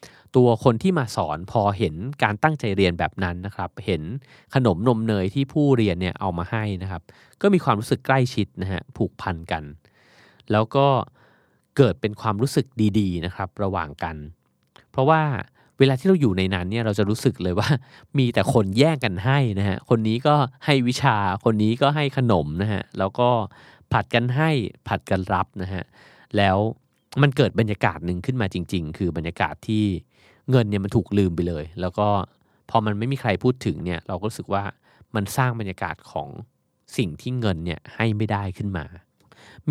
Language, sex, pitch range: Thai, male, 95-125 Hz